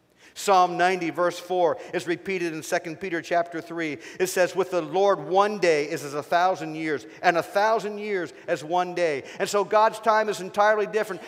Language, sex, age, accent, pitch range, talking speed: English, male, 50-69, American, 160-215 Hz, 195 wpm